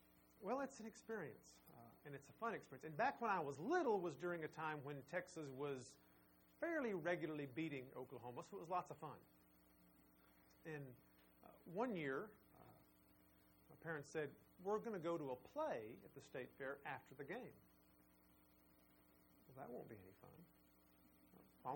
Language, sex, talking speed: English, male, 165 wpm